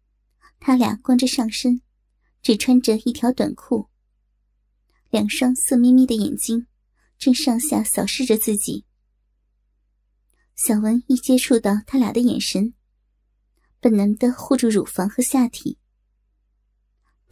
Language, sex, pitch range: Chinese, male, 200-250 Hz